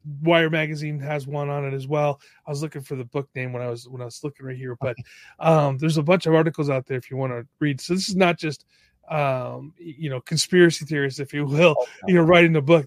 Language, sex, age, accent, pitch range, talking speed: English, male, 30-49, American, 135-165 Hz, 260 wpm